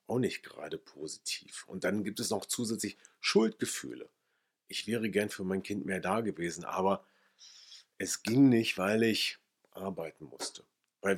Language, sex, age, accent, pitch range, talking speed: German, male, 40-59, German, 95-125 Hz, 150 wpm